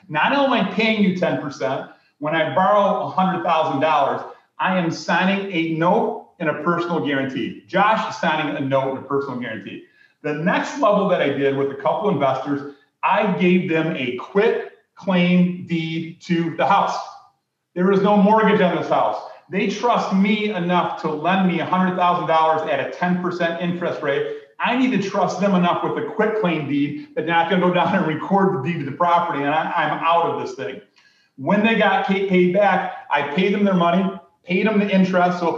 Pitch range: 160-200 Hz